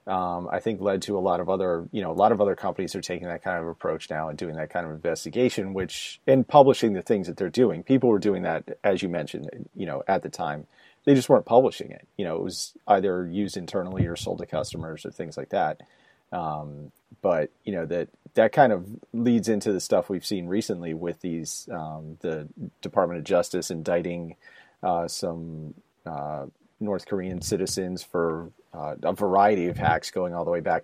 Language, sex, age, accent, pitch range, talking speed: English, male, 30-49, American, 85-105 Hz, 210 wpm